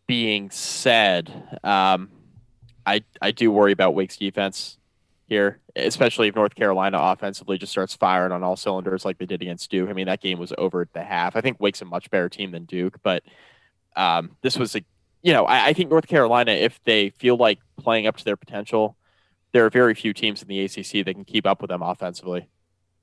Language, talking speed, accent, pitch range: English, 210 wpm, American, 95-110 Hz